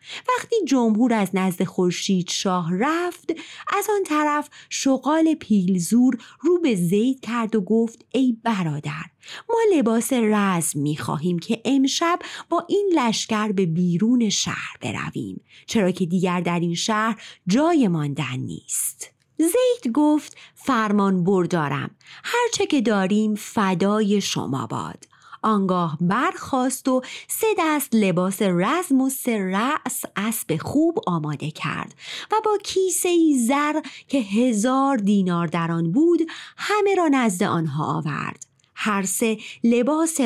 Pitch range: 180-300 Hz